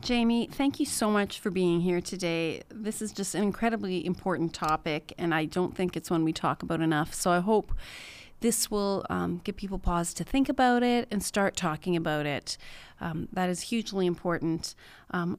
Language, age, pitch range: English, 30-49, 175-220 Hz